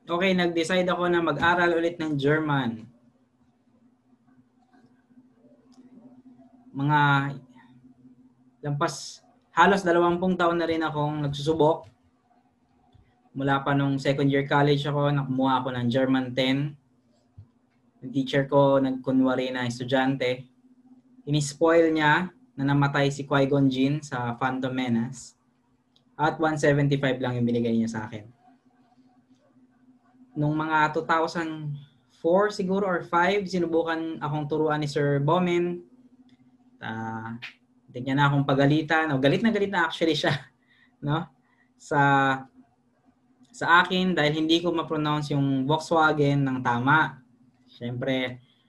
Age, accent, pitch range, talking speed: 20-39, native, 130-175 Hz, 110 wpm